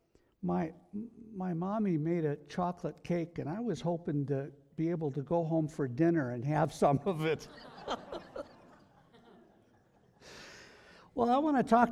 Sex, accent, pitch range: male, American, 125-175 Hz